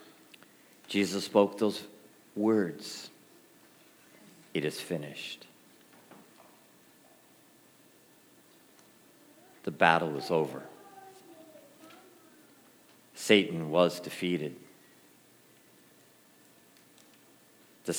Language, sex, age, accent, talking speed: English, male, 50-69, American, 50 wpm